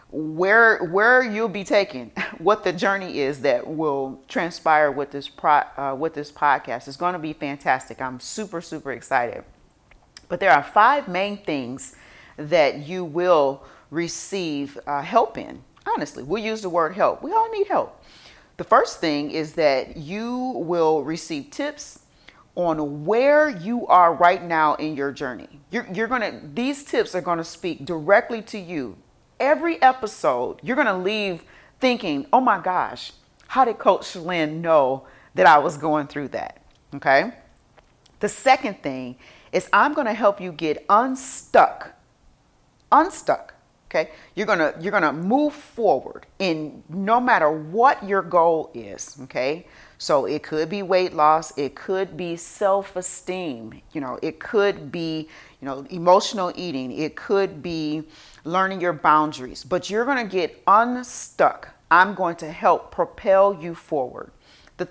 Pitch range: 150-205 Hz